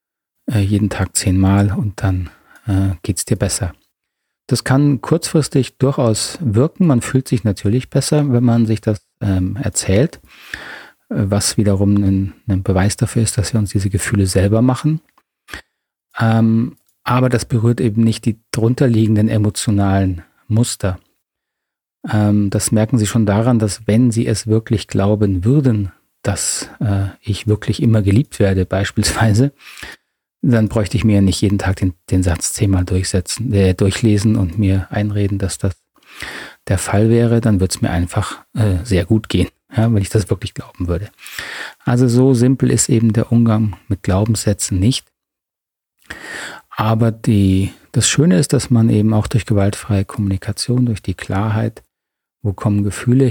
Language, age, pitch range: German, 30-49, 100-120 Hz